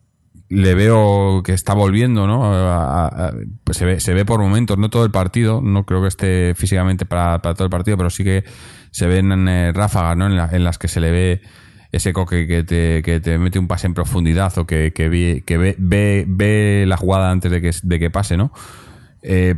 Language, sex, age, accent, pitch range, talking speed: Spanish, male, 30-49, Spanish, 80-95 Hz, 225 wpm